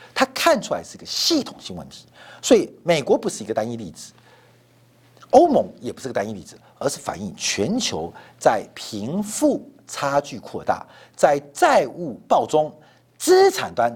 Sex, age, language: male, 50-69, Chinese